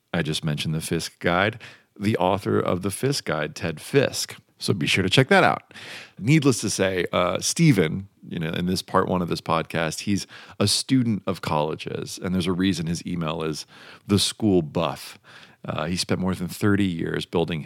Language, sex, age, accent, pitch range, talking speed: English, male, 40-59, American, 90-115 Hz, 195 wpm